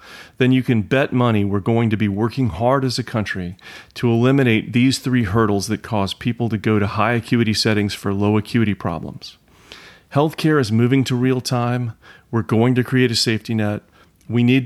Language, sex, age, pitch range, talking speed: English, male, 40-59, 105-130 Hz, 190 wpm